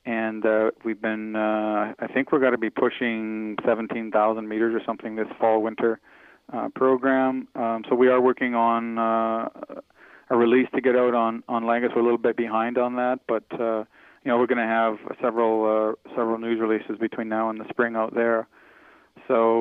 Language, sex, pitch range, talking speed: English, male, 110-120 Hz, 195 wpm